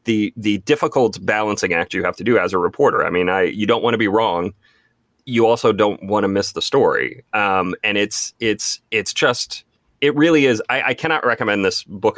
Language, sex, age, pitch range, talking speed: English, male, 30-49, 100-145 Hz, 215 wpm